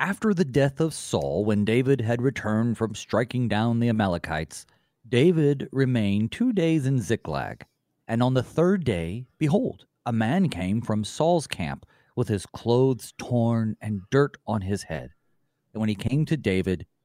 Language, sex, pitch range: English, male, 105-140 Hz